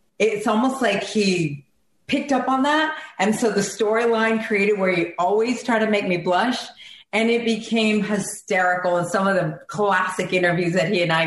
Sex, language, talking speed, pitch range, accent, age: female, English, 185 wpm, 170-215 Hz, American, 40-59